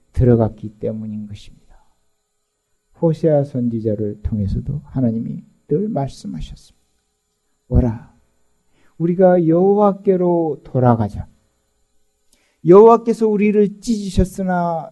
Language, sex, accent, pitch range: Korean, male, native, 120-190 Hz